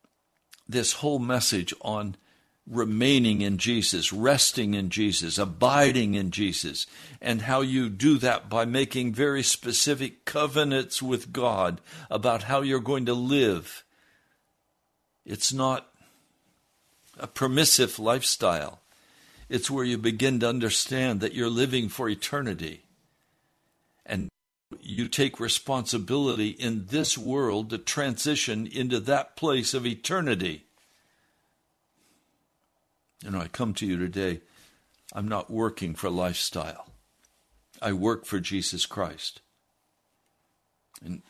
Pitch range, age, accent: 100-130 Hz, 60-79, American